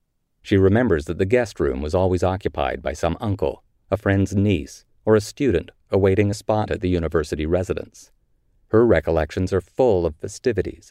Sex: male